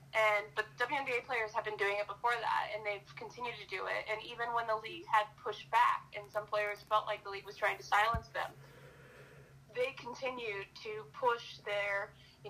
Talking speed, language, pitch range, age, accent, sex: 200 wpm, English, 190-215 Hz, 20-39, American, female